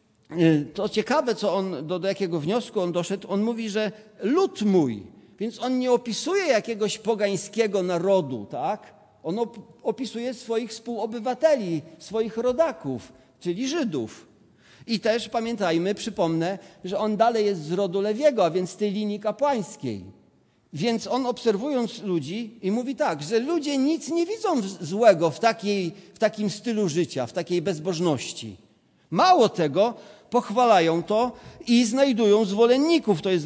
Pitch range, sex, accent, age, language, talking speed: 175-240 Hz, male, native, 50-69, Polish, 145 wpm